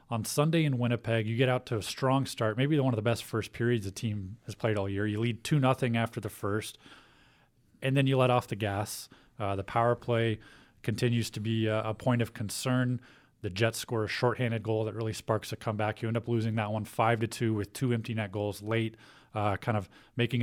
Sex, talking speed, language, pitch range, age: male, 225 wpm, English, 110-130 Hz, 30-49